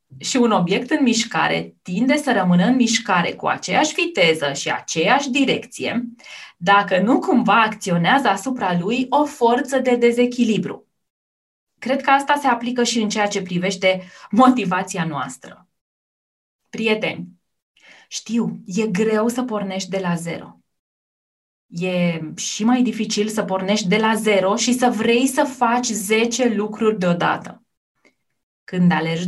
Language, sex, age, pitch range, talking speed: Romanian, female, 20-39, 195-255 Hz, 135 wpm